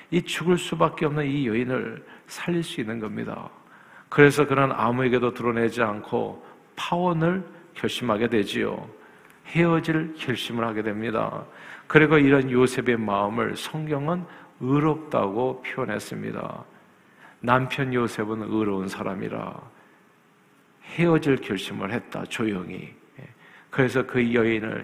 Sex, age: male, 50-69